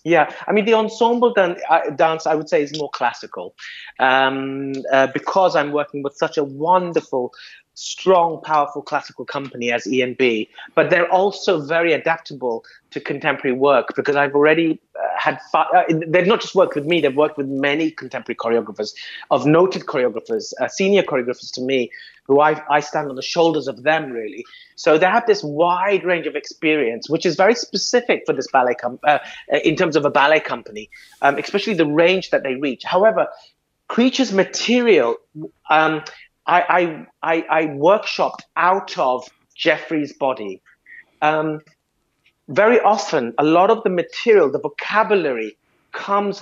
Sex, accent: male, British